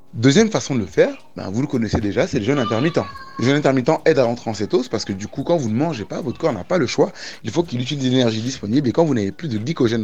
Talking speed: 305 wpm